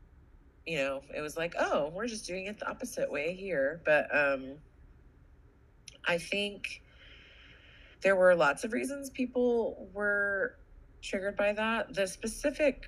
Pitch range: 150-205 Hz